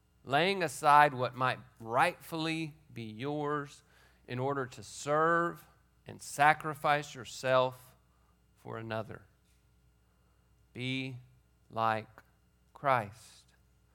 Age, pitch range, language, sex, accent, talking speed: 40-59, 105-135 Hz, English, male, American, 80 wpm